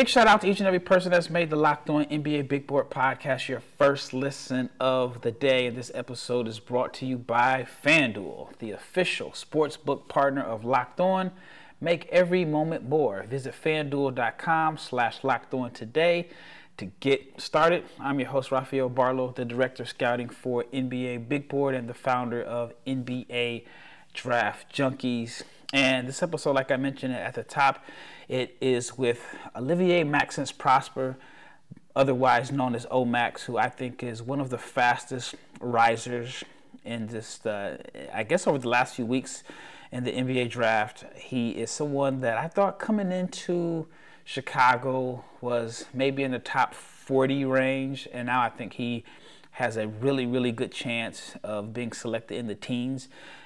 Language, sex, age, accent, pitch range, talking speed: English, male, 30-49, American, 120-145 Hz, 165 wpm